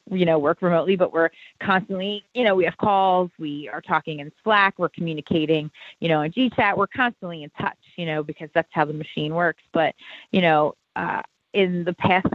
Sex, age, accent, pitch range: female, 30-49, American, 160-195 Hz